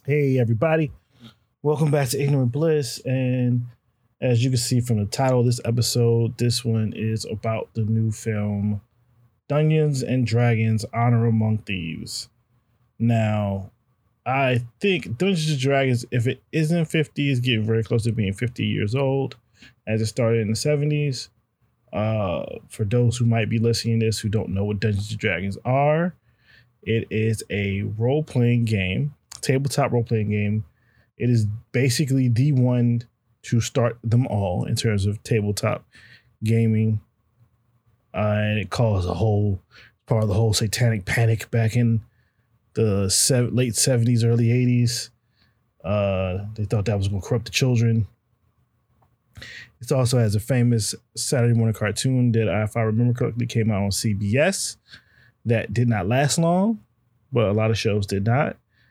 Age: 20-39